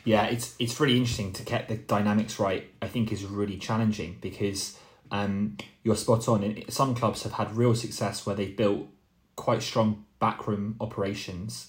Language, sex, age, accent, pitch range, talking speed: English, male, 20-39, British, 100-110 Hz, 175 wpm